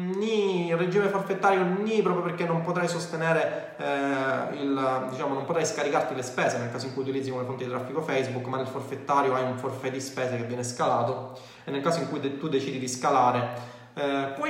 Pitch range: 125-165 Hz